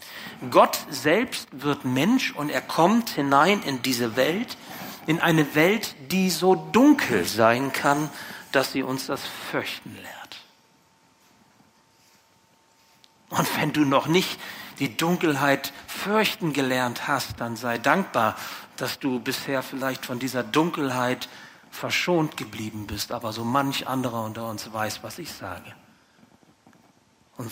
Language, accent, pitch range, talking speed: German, German, 120-165 Hz, 130 wpm